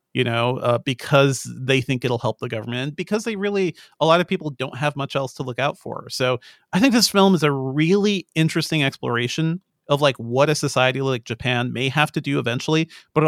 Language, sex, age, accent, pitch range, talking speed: English, male, 40-59, American, 125-155 Hz, 215 wpm